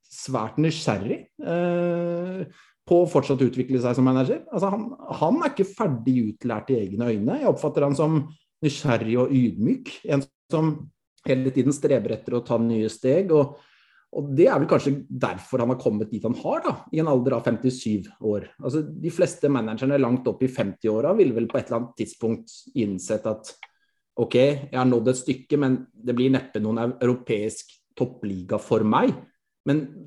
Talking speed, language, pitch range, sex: 190 wpm, English, 115-150 Hz, male